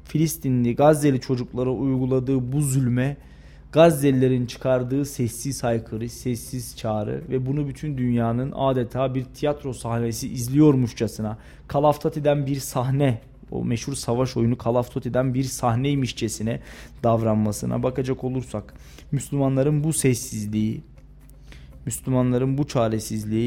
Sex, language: male, Turkish